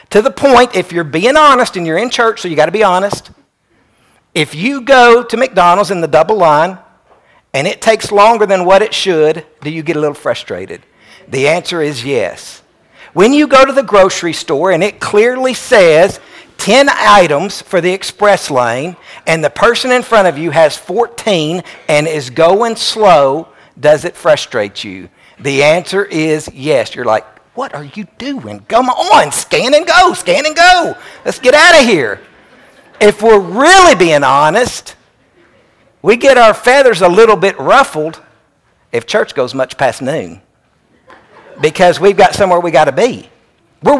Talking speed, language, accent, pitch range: 175 wpm, English, American, 160-245 Hz